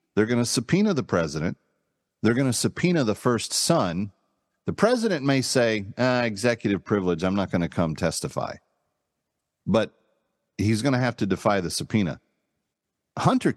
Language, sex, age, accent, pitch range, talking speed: English, male, 40-59, American, 95-125 Hz, 160 wpm